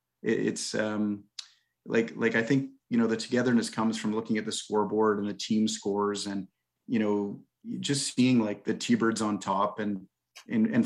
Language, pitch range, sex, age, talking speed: English, 100-115 Hz, male, 30-49, 180 wpm